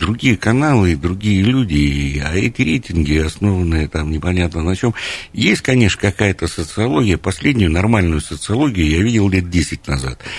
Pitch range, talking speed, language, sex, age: 80-115 Hz, 140 wpm, Russian, male, 60-79